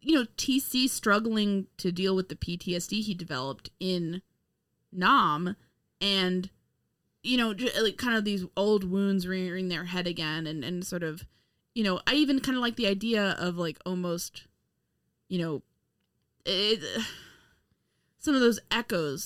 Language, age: English, 20-39